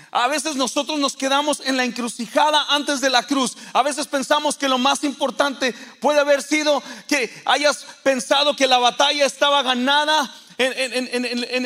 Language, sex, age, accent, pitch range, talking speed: Spanish, male, 40-59, Mexican, 205-260 Hz, 170 wpm